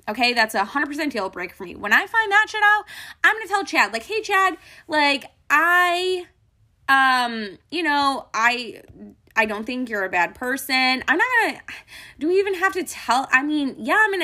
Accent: American